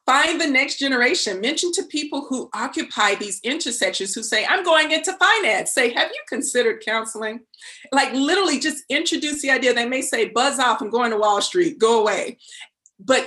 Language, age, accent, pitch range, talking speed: English, 30-49, American, 220-295 Hz, 185 wpm